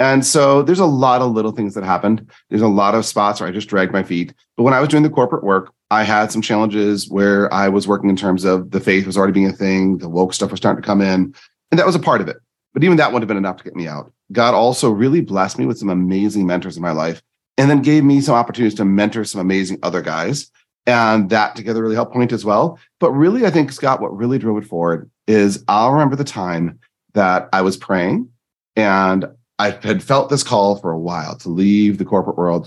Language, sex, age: English, male, 30-49